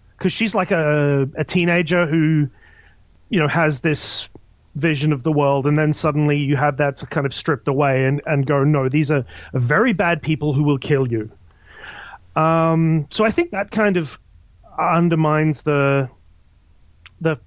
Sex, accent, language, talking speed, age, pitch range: male, Australian, English, 165 wpm, 30-49, 135-165 Hz